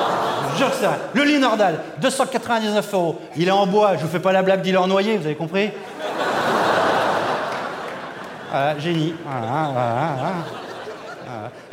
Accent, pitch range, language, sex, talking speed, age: French, 175-225 Hz, French, male, 160 wpm, 30-49